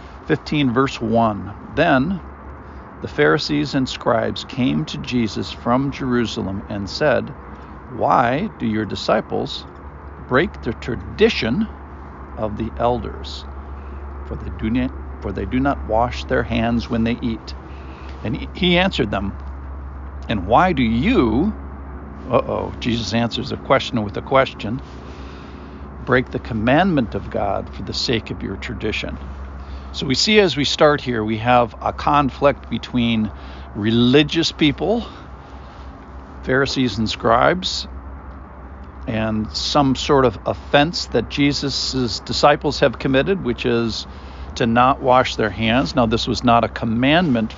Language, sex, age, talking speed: English, male, 60-79, 130 wpm